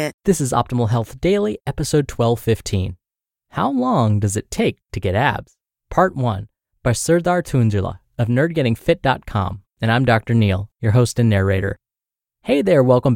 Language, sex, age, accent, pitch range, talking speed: English, male, 20-39, American, 110-150 Hz, 150 wpm